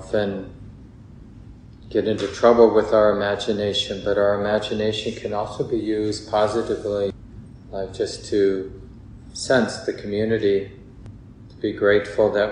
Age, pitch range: 30-49, 100-115 Hz